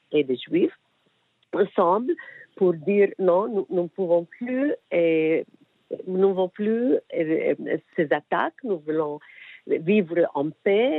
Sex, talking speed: female, 125 wpm